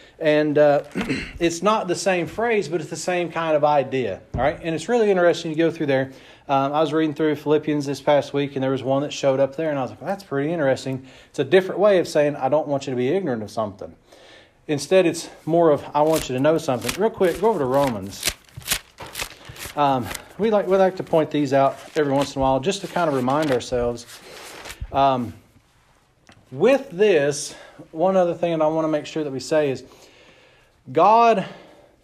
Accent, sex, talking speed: American, male, 220 wpm